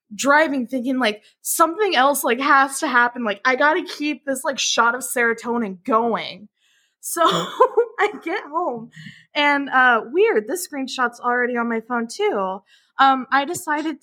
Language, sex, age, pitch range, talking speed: English, female, 20-39, 215-295 Hz, 160 wpm